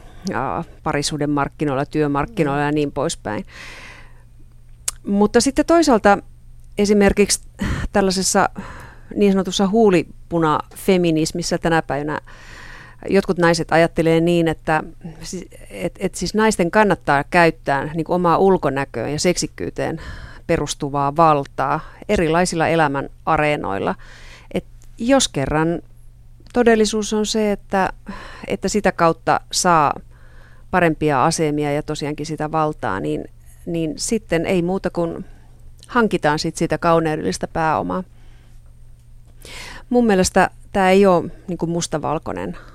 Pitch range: 140-185 Hz